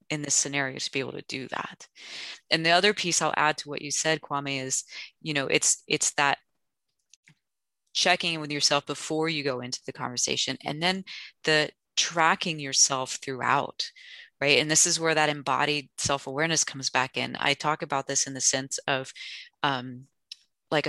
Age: 20-39